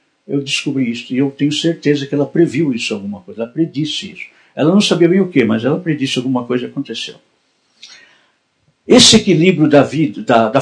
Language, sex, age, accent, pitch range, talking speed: Portuguese, male, 60-79, Brazilian, 135-170 Hz, 190 wpm